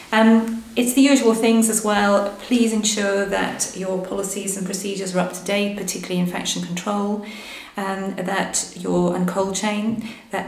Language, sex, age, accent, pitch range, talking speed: English, female, 30-49, British, 180-215 Hz, 165 wpm